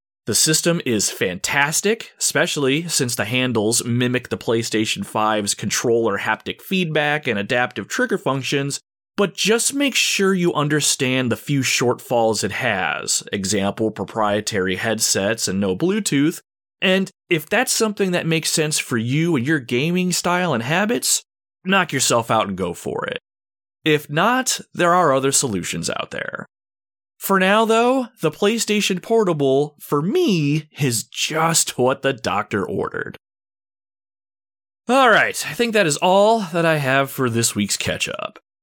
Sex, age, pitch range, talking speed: male, 30-49, 115-190 Hz, 145 wpm